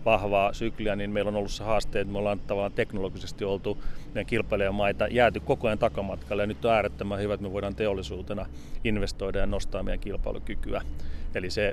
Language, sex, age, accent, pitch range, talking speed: Finnish, male, 30-49, native, 100-115 Hz, 180 wpm